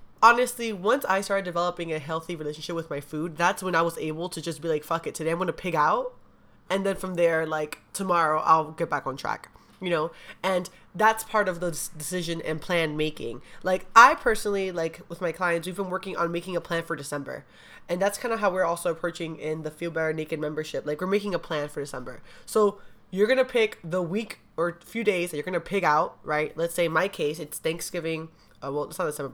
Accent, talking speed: American, 235 wpm